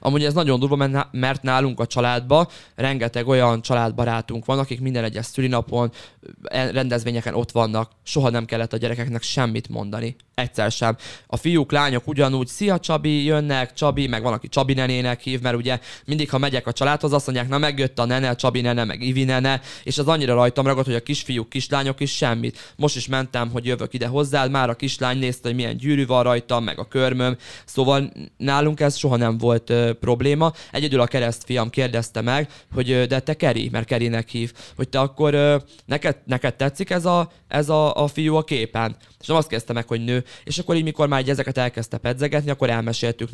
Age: 20-39